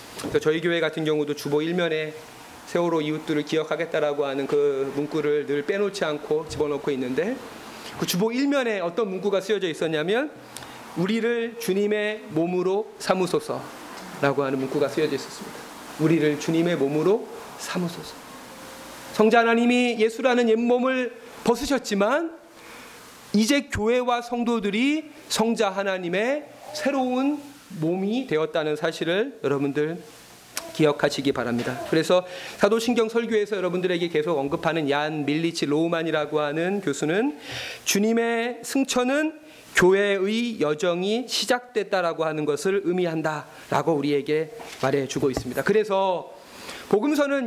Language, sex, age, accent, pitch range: Korean, male, 40-59, native, 150-230 Hz